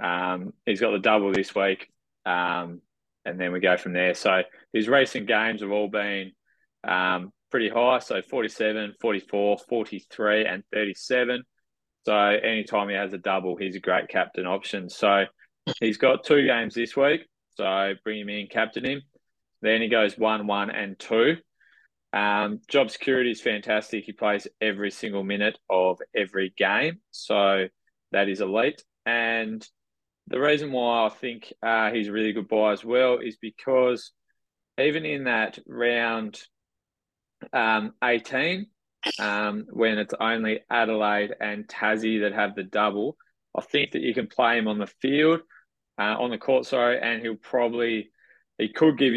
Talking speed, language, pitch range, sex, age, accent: 160 wpm, English, 100-115 Hz, male, 20-39, Australian